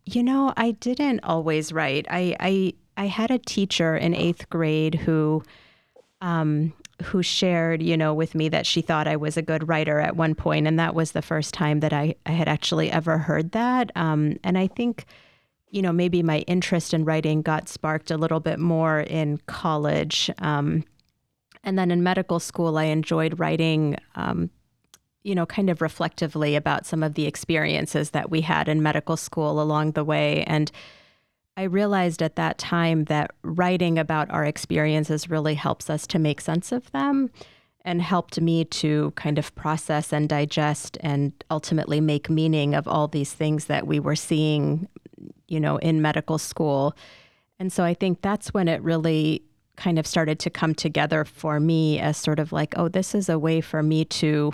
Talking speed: 185 wpm